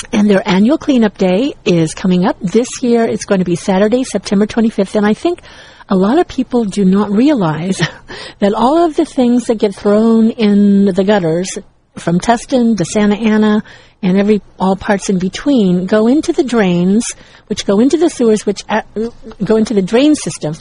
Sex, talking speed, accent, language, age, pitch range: female, 190 wpm, American, English, 50-69, 190-230 Hz